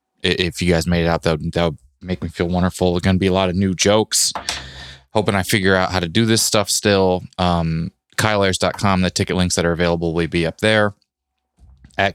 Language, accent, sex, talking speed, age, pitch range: English, American, male, 225 wpm, 20-39, 85-105 Hz